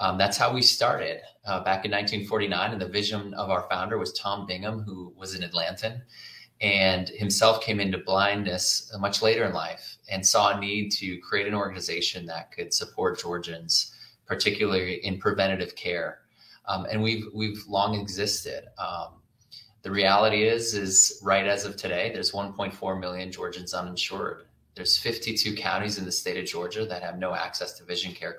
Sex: male